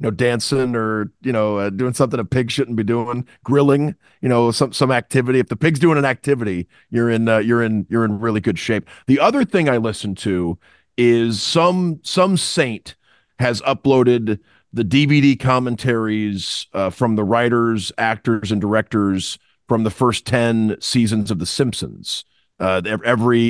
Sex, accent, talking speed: male, American, 175 wpm